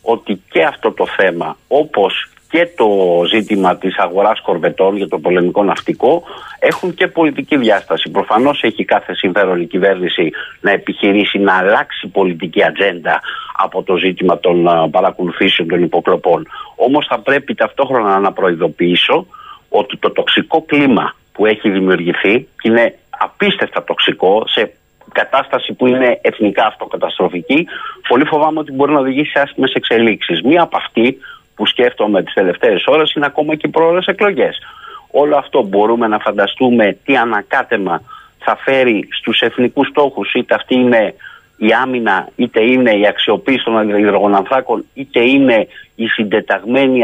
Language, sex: Greek, male